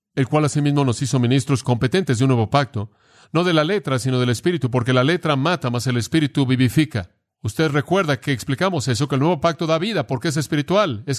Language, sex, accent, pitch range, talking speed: Spanish, male, Mexican, 120-150 Hz, 220 wpm